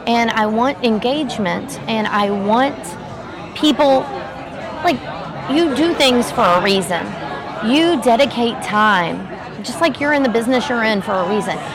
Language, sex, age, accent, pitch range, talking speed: English, female, 30-49, American, 220-295 Hz, 150 wpm